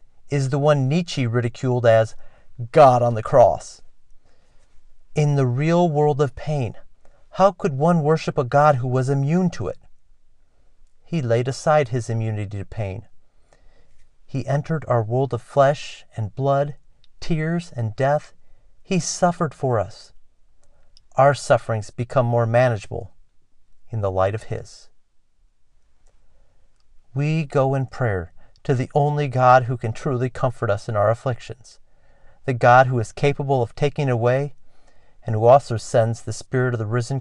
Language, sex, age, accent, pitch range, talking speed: English, male, 40-59, American, 110-145 Hz, 150 wpm